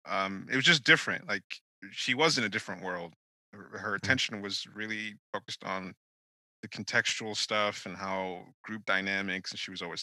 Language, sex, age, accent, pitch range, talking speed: English, male, 20-39, American, 85-105 Hz, 180 wpm